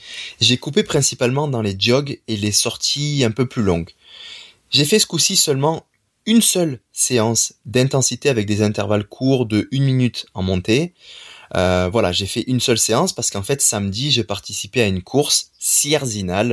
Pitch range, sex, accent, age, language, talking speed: 105-140 Hz, male, French, 20-39, French, 175 wpm